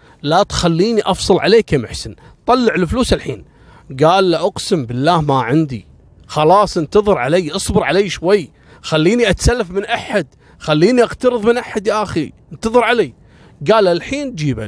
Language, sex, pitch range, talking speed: Arabic, male, 125-180 Hz, 145 wpm